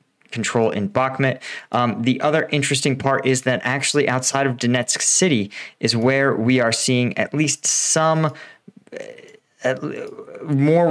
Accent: American